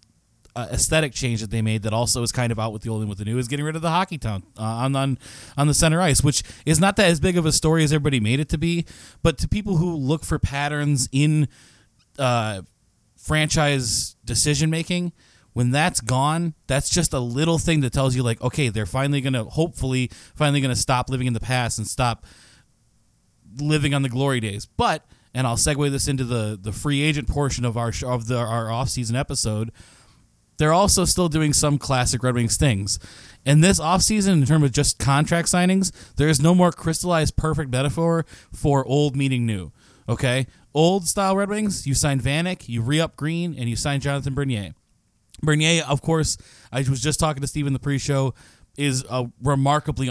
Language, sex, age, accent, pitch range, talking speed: English, male, 20-39, American, 120-155 Hz, 200 wpm